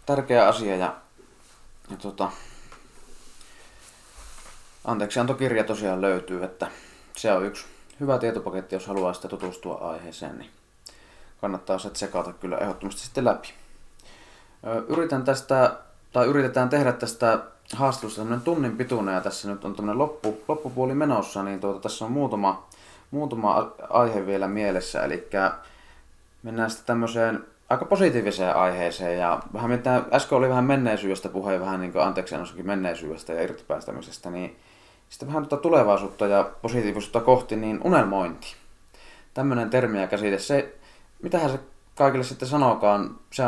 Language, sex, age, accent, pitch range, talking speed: Finnish, male, 20-39, native, 95-125 Hz, 135 wpm